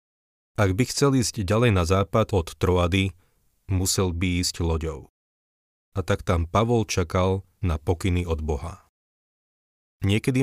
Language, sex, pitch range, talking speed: Slovak, male, 85-105 Hz, 130 wpm